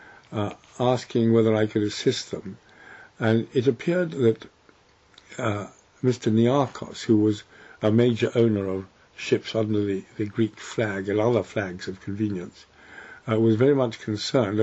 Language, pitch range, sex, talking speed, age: English, 105-120 Hz, male, 150 wpm, 60-79